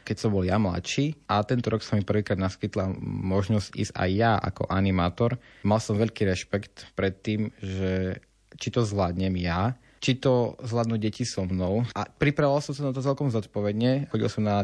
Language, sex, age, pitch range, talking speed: Slovak, male, 20-39, 100-115 Hz, 190 wpm